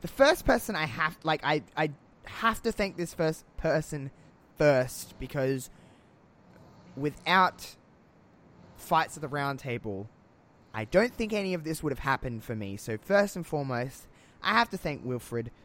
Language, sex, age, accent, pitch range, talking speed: English, male, 20-39, Australian, 120-160 Hz, 155 wpm